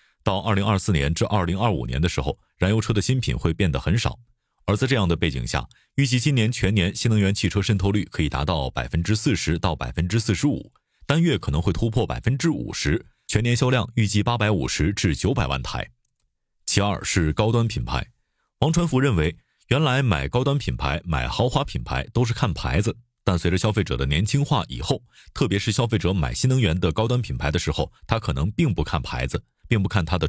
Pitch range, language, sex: 85-120 Hz, Chinese, male